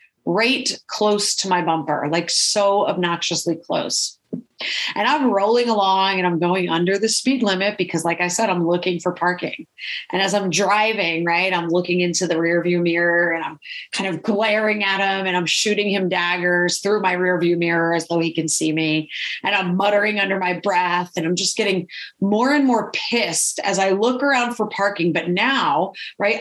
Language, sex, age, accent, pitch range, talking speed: English, female, 30-49, American, 170-205 Hz, 195 wpm